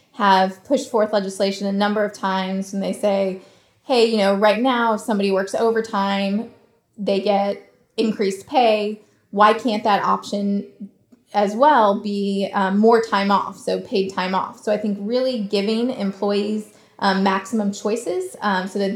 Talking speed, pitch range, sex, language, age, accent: 160 wpm, 195-225 Hz, female, English, 20-39, American